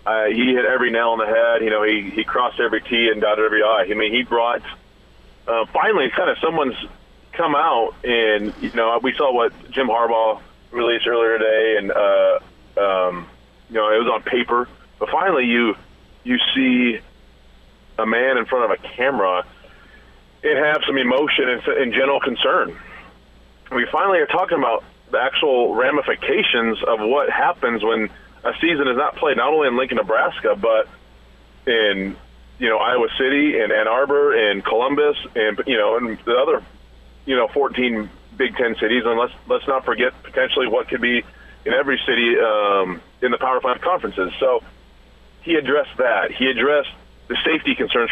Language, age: English, 30-49